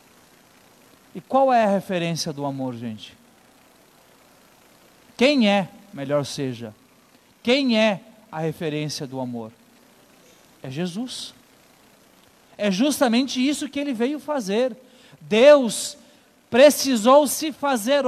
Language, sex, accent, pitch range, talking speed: Portuguese, male, Brazilian, 185-265 Hz, 105 wpm